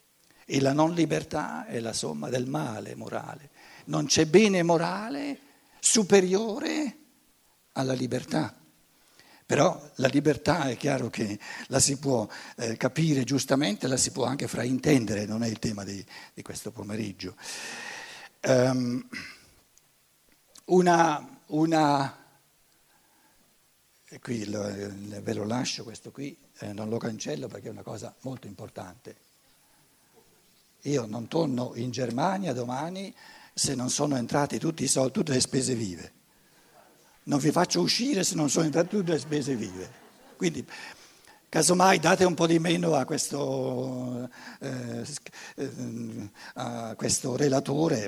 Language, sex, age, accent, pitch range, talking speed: Italian, male, 60-79, native, 115-160 Hz, 125 wpm